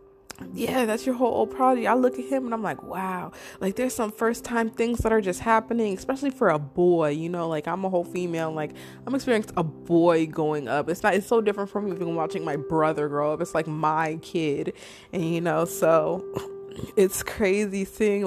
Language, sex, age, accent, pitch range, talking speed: English, female, 20-39, American, 160-210 Hz, 215 wpm